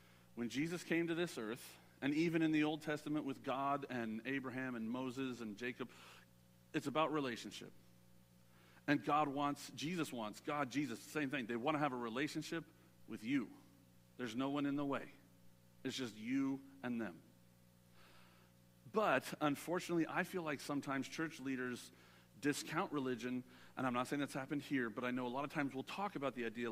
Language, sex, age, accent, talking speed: English, male, 50-69, American, 175 wpm